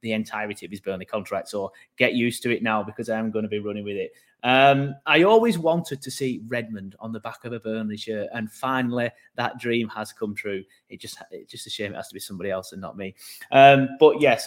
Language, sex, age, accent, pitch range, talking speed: English, male, 30-49, British, 110-130 Hz, 245 wpm